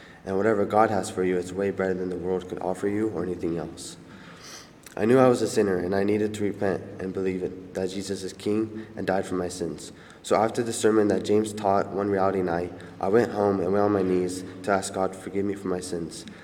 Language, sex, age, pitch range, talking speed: English, male, 20-39, 90-105 Hz, 250 wpm